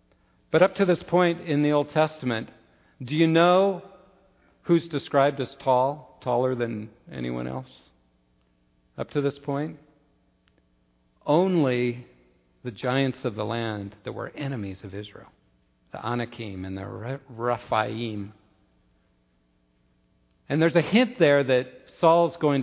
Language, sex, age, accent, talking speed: English, male, 50-69, American, 125 wpm